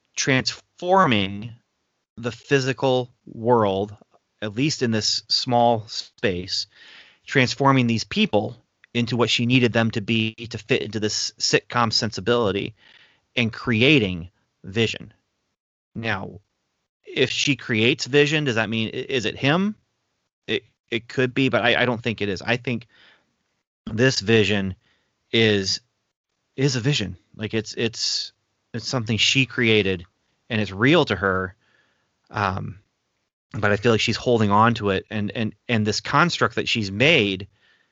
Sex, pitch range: male, 105-125 Hz